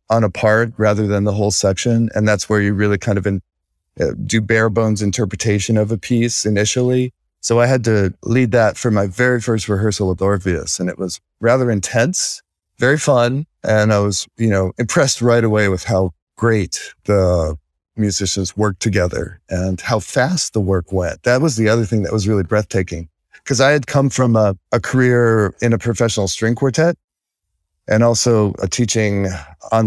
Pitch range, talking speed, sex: 100-120 Hz, 190 wpm, male